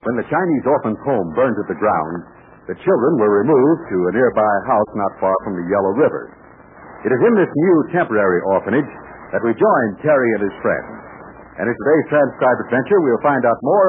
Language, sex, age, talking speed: English, male, 60-79, 200 wpm